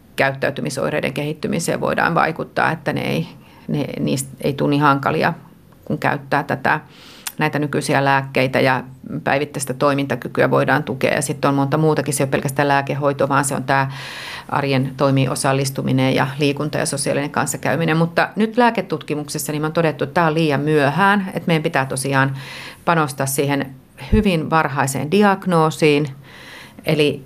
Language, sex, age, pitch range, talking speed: Finnish, female, 40-59, 135-165 Hz, 145 wpm